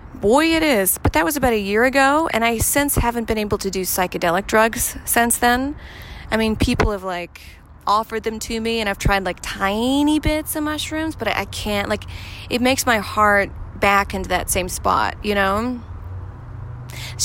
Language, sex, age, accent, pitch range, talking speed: English, female, 20-39, American, 195-275 Hz, 195 wpm